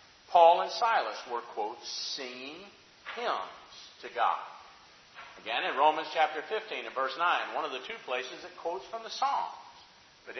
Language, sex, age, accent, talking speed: English, male, 40-59, American, 160 wpm